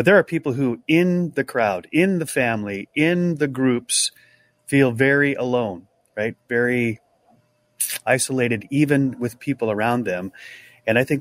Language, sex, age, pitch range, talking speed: English, male, 30-49, 120-155 Hz, 150 wpm